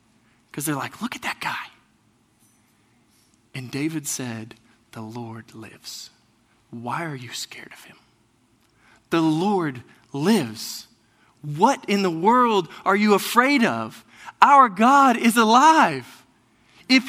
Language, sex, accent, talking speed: English, male, American, 125 wpm